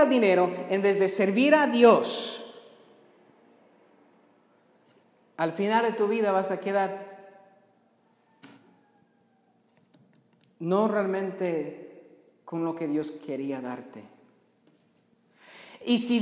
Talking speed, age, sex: 95 wpm, 50-69, male